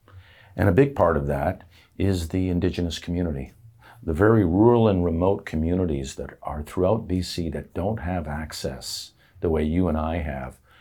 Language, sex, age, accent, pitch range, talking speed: English, male, 50-69, American, 80-100 Hz, 165 wpm